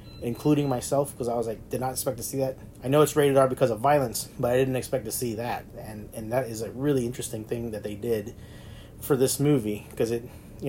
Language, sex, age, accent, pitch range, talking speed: English, male, 30-49, American, 110-140 Hz, 245 wpm